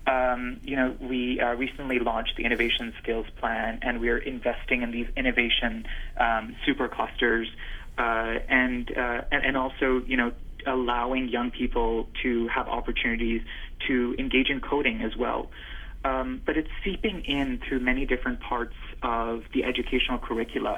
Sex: male